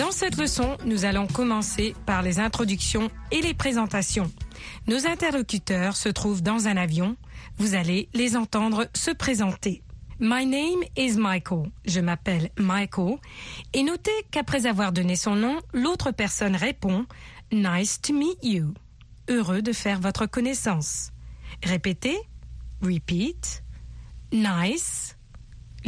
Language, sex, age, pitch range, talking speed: French, female, 40-59, 175-245 Hz, 145 wpm